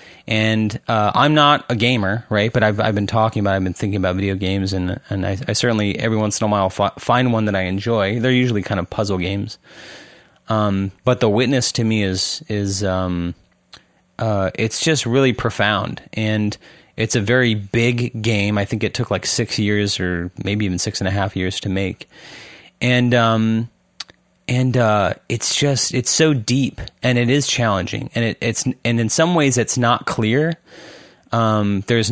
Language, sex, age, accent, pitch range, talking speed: English, male, 30-49, American, 100-120 Hz, 195 wpm